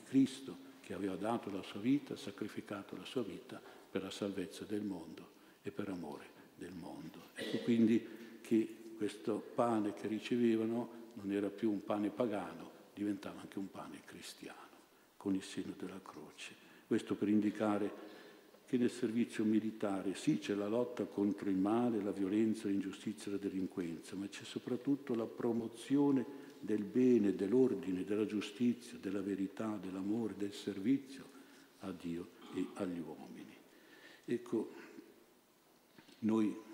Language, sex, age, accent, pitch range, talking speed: Italian, male, 60-79, native, 100-115 Hz, 140 wpm